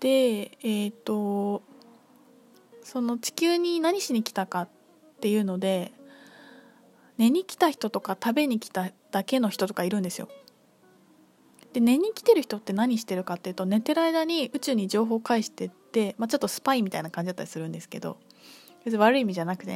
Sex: female